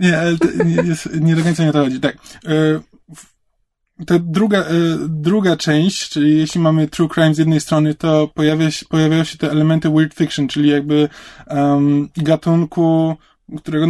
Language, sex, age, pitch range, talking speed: Polish, male, 20-39, 145-165 Hz, 165 wpm